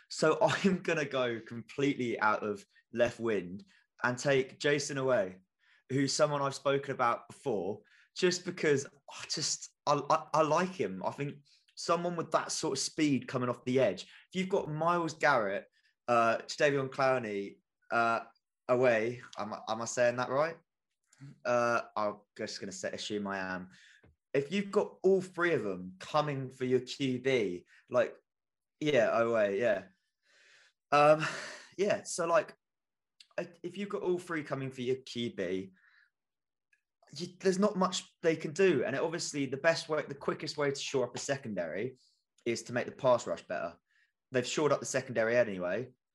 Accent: British